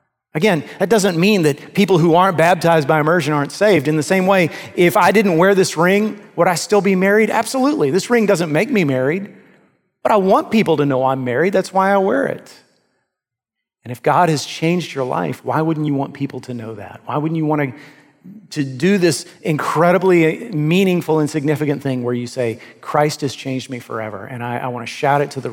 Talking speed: 220 wpm